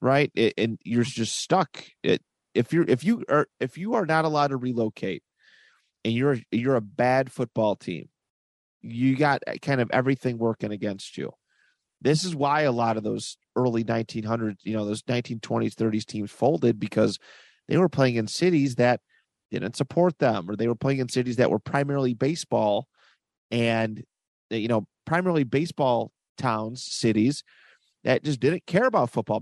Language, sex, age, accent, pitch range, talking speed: English, male, 30-49, American, 115-145 Hz, 165 wpm